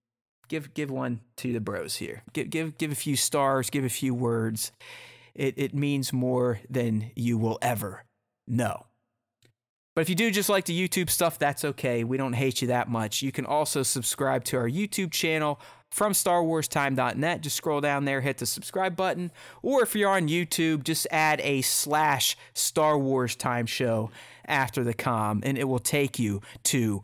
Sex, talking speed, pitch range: male, 185 wpm, 120-160 Hz